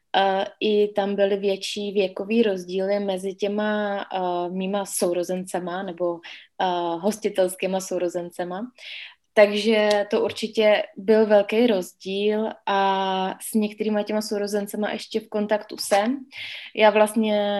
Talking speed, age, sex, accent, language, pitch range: 115 wpm, 20-39, female, native, Czech, 190-210 Hz